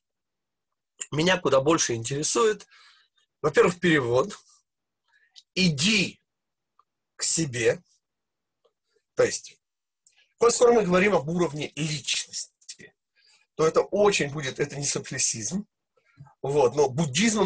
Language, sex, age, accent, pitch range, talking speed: Russian, male, 40-59, native, 155-240 Hz, 95 wpm